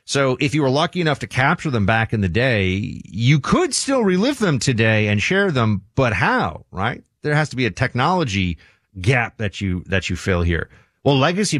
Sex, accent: male, American